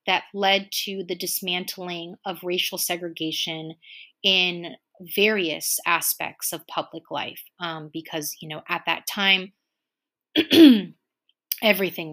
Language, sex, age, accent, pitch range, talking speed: English, female, 30-49, American, 170-215 Hz, 110 wpm